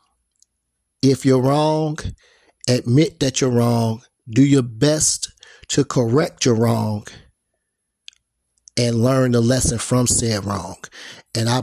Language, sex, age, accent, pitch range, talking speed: English, male, 40-59, American, 110-135 Hz, 120 wpm